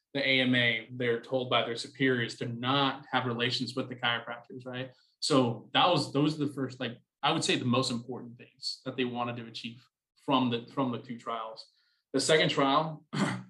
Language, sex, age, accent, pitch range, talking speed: English, male, 20-39, American, 125-140 Hz, 195 wpm